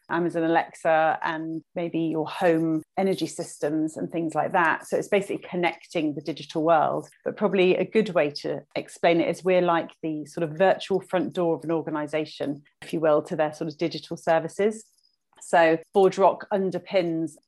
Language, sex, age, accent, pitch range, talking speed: English, female, 30-49, British, 160-180 Hz, 180 wpm